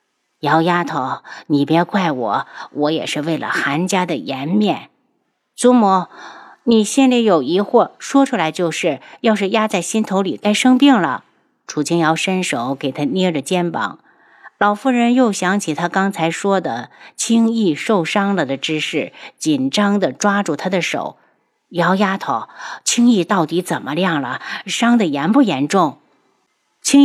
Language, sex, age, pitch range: Chinese, female, 50-69, 160-220 Hz